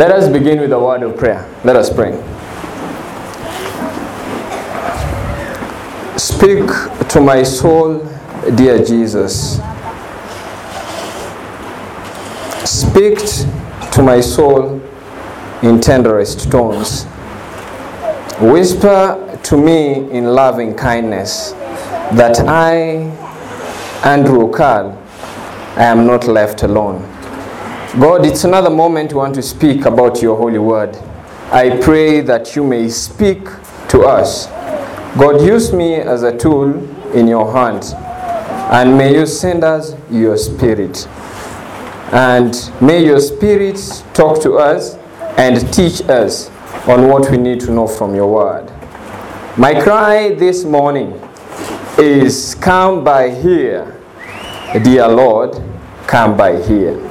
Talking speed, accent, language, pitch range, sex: 110 wpm, South African, English, 120-160 Hz, male